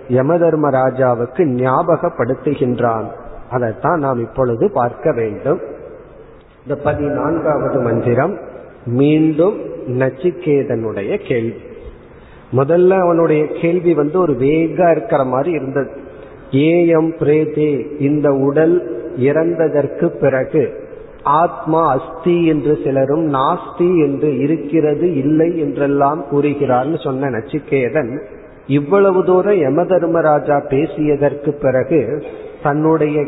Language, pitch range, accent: Tamil, 135-170 Hz, native